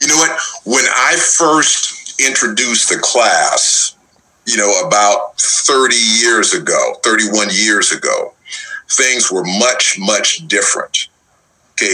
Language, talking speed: English, 120 wpm